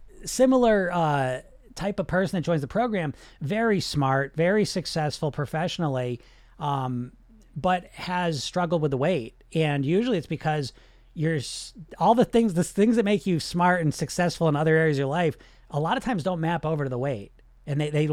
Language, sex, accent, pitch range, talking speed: English, male, American, 125-165 Hz, 185 wpm